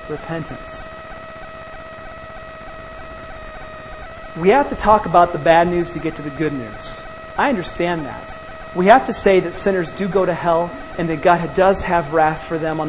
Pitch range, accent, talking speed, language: 160-235 Hz, American, 170 wpm, English